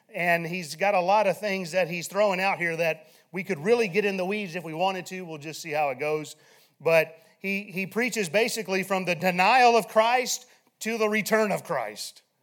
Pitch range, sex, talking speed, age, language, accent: 170-215 Hz, male, 215 wpm, 40-59, English, American